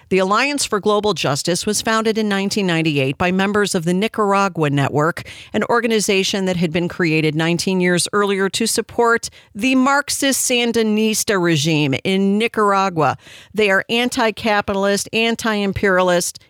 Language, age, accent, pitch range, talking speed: English, 50-69, American, 165-235 Hz, 125 wpm